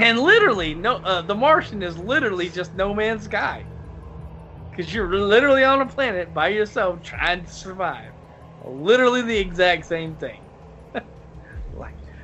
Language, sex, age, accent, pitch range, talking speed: English, male, 20-39, American, 115-180 Hz, 140 wpm